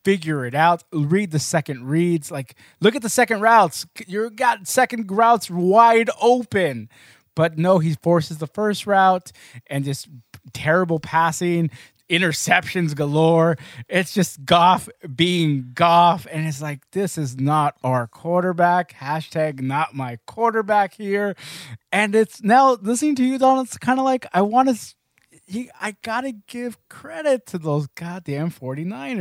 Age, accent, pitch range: 20-39, American, 155-210 Hz